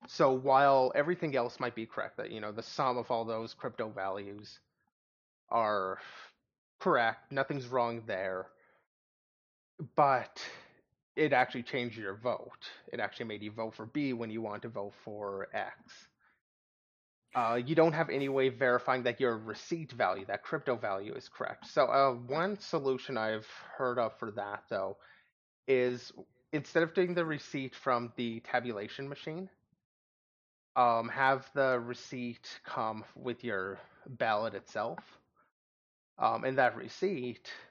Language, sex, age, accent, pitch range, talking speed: English, male, 30-49, American, 110-135 Hz, 145 wpm